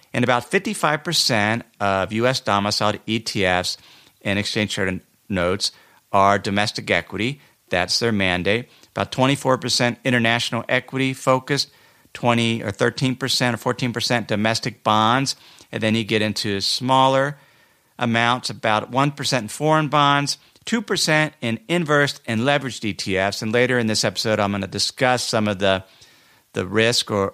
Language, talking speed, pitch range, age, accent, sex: English, 135 wpm, 105-135 Hz, 50-69, American, male